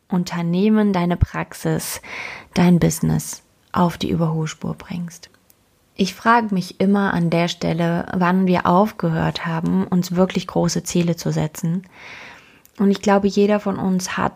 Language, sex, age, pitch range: German, female, 20-39, 180-210 Hz